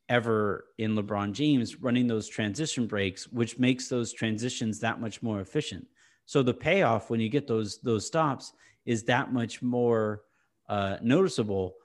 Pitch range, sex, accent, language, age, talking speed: 115-145 Hz, male, American, English, 30-49, 155 wpm